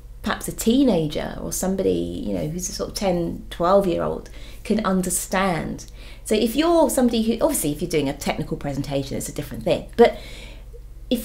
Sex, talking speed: female, 185 wpm